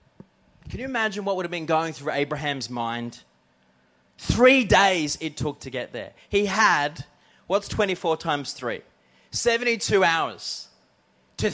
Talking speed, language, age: 140 wpm, English, 20-39